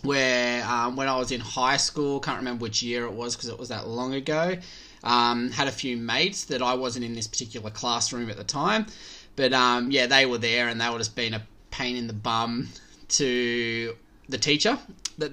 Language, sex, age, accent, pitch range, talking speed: English, male, 20-39, Australian, 120-145 Hz, 215 wpm